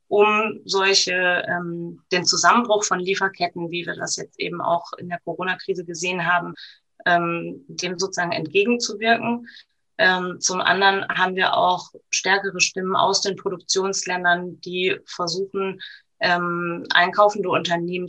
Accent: German